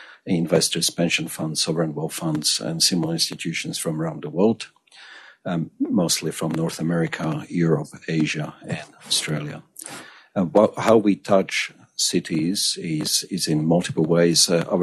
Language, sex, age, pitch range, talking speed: English, male, 50-69, 80-85 Hz, 140 wpm